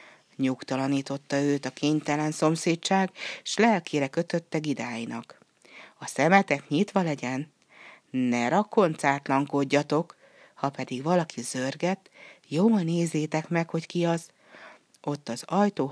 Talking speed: 105 wpm